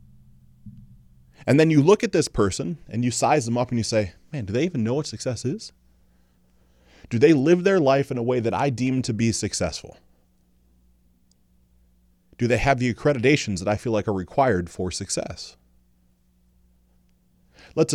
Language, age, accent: English, 30-49, American